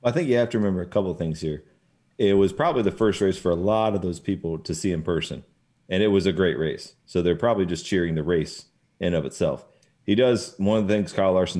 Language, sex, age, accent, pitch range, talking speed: English, male, 30-49, American, 85-105 Hz, 265 wpm